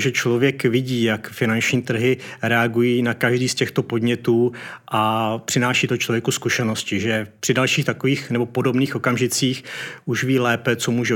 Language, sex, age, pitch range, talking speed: Czech, male, 30-49, 115-125 Hz, 155 wpm